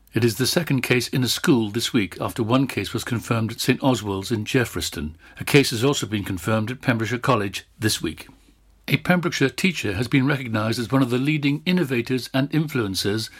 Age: 60-79